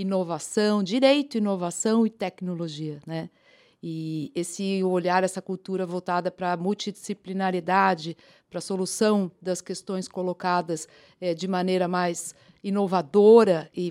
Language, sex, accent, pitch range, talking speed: Portuguese, female, Brazilian, 180-235 Hz, 110 wpm